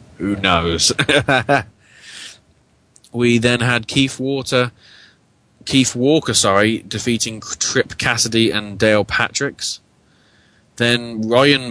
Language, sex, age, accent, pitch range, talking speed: English, male, 20-39, British, 100-115 Hz, 90 wpm